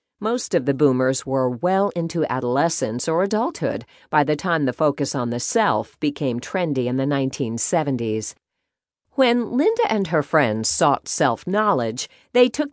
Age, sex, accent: 50-69, female, American